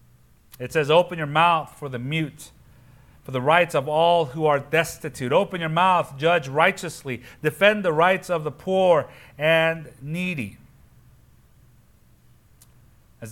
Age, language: 40-59, English